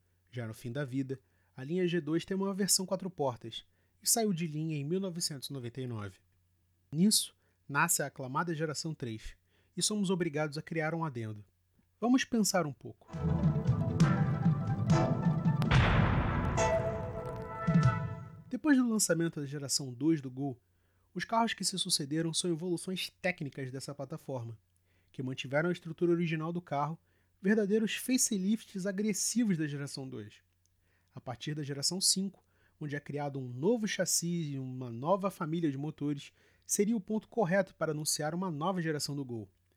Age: 30-49